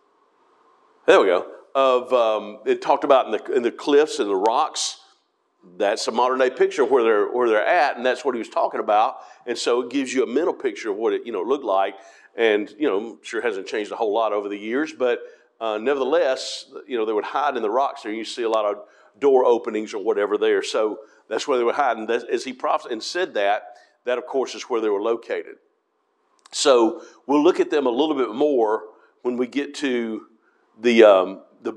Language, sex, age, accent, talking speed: English, male, 50-69, American, 225 wpm